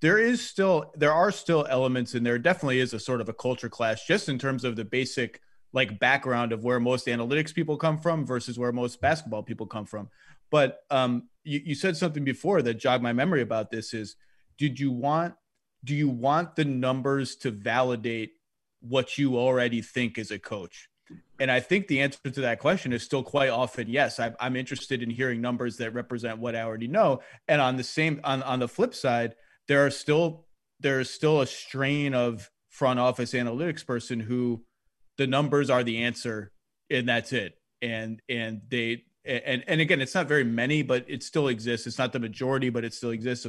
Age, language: 30-49, English